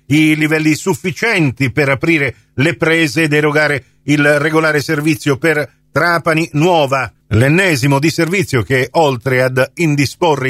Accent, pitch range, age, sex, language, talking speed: native, 135-175 Hz, 50-69, male, Italian, 125 wpm